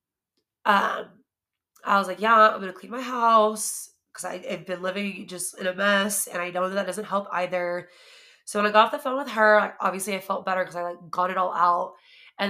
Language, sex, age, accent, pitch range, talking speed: English, female, 20-39, American, 185-215 Hz, 240 wpm